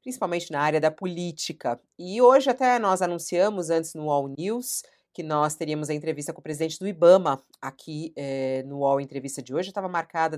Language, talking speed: Portuguese, 185 wpm